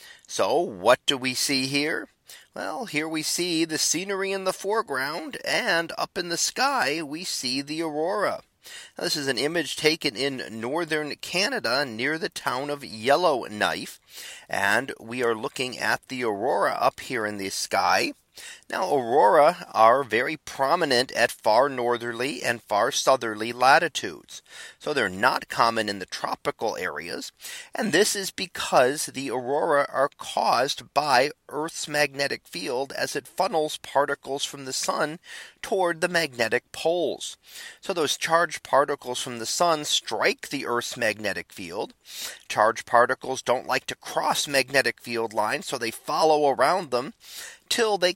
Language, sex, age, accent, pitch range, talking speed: English, male, 40-59, American, 125-160 Hz, 150 wpm